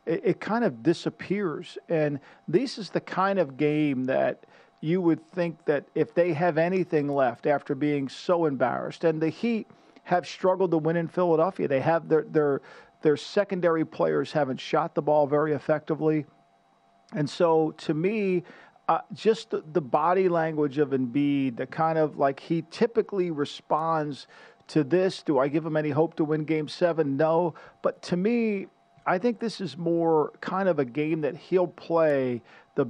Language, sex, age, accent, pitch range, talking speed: English, male, 50-69, American, 145-175 Hz, 175 wpm